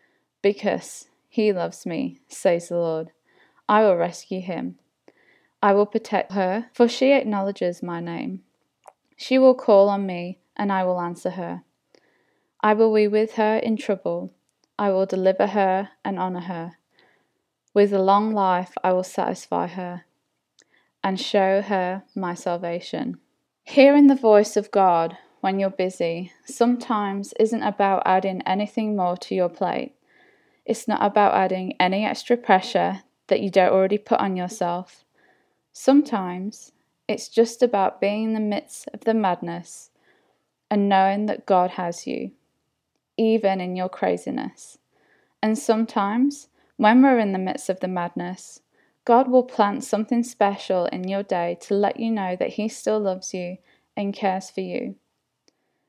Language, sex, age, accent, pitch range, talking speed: English, female, 20-39, British, 185-220 Hz, 150 wpm